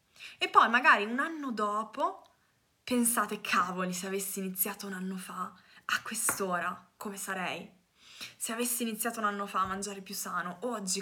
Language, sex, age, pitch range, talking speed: Italian, female, 20-39, 200-250 Hz, 160 wpm